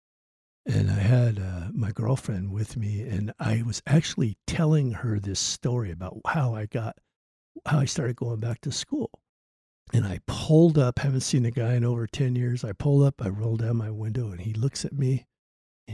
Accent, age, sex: American, 60-79, male